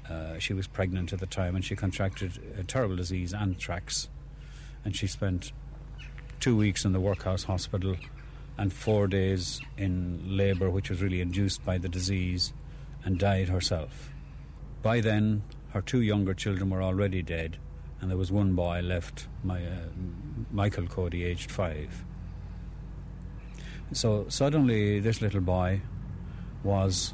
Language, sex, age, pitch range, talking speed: English, male, 50-69, 90-105 Hz, 140 wpm